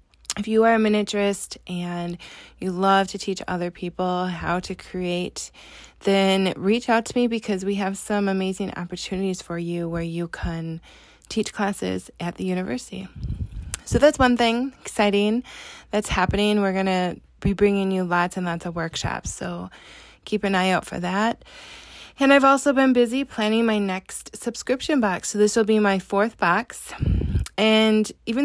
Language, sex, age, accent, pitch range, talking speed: English, female, 20-39, American, 175-210 Hz, 165 wpm